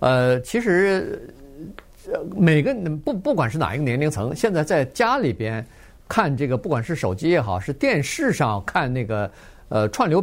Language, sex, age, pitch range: Chinese, male, 50-69, 110-170 Hz